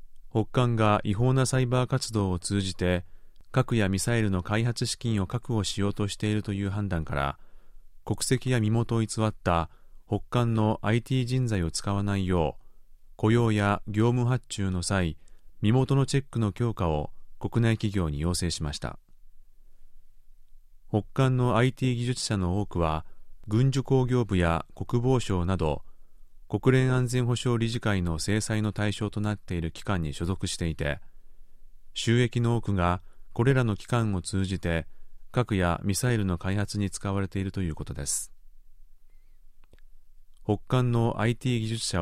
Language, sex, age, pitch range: Japanese, male, 30-49, 95-120 Hz